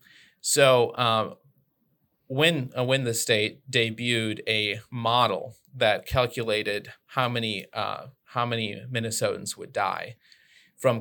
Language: English